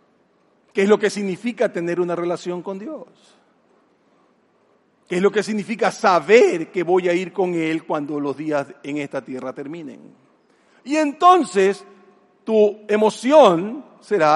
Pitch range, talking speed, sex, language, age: 150-215 Hz, 140 wpm, male, Spanish, 40-59